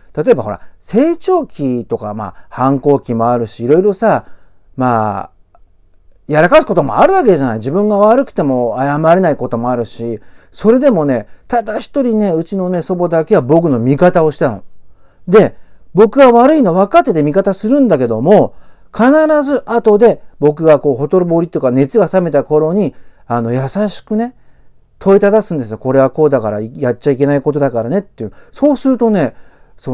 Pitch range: 120-195 Hz